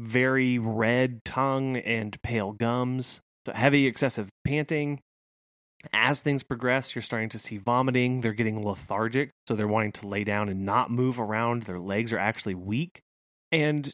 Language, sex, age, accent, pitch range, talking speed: English, male, 30-49, American, 105-130 Hz, 155 wpm